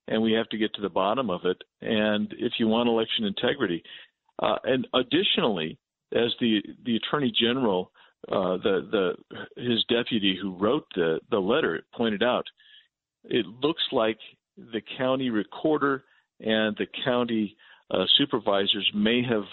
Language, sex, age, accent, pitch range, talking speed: English, male, 50-69, American, 105-130 Hz, 150 wpm